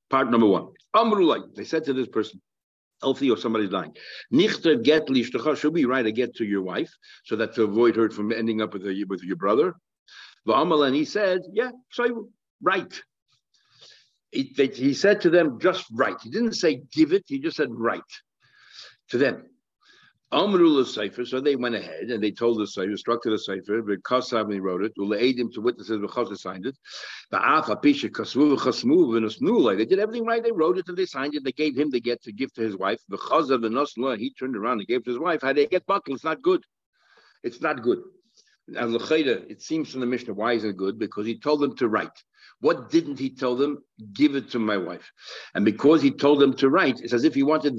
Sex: male